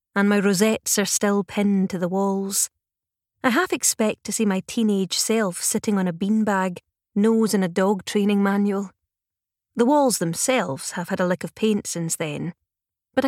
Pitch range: 170-215 Hz